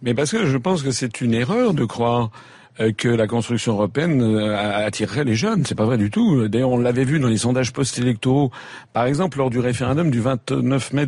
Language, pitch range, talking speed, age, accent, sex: French, 110-140 Hz, 210 wpm, 50-69, French, male